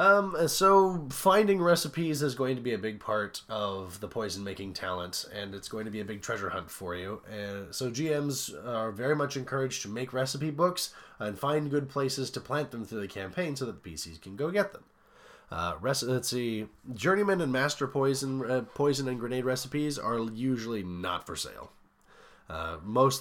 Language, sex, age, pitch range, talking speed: English, male, 20-39, 105-150 Hz, 195 wpm